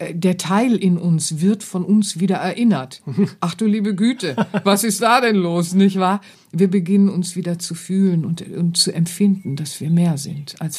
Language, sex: German, female